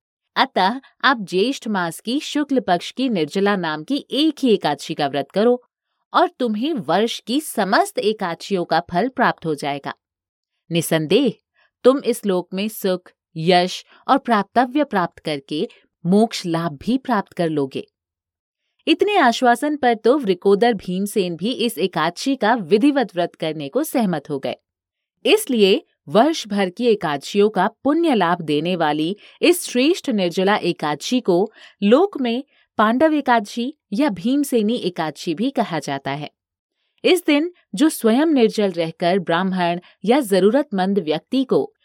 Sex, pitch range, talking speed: female, 170-255 Hz, 140 wpm